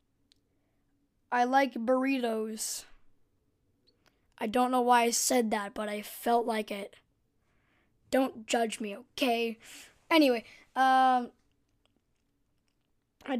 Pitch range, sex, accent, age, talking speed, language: 235-270 Hz, female, American, 10-29, 100 wpm, English